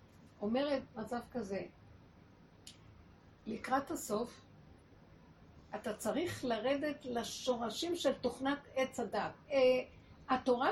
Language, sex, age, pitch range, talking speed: Hebrew, female, 50-69, 210-270 Hz, 80 wpm